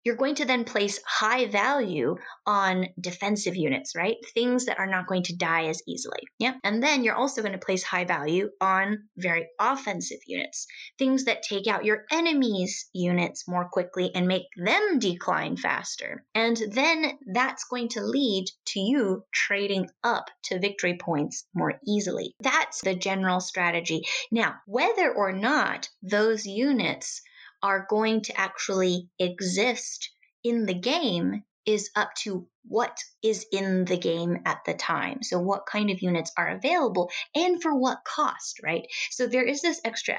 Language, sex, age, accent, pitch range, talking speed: English, female, 20-39, American, 185-250 Hz, 165 wpm